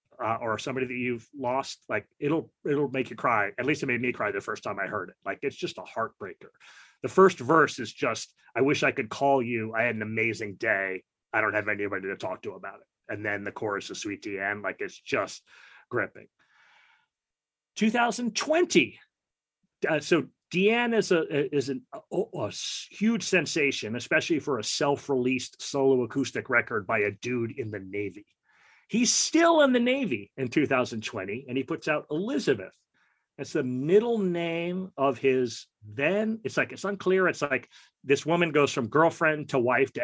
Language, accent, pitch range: English, American, 120-175 Hz